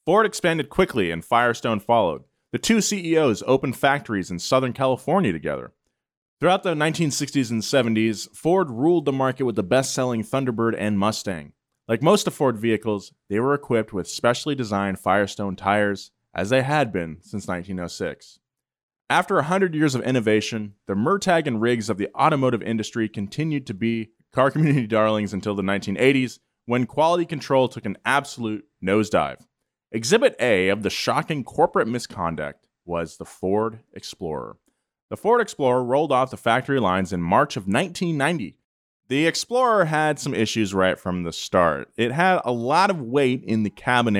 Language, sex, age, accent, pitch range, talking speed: English, male, 30-49, American, 105-145 Hz, 160 wpm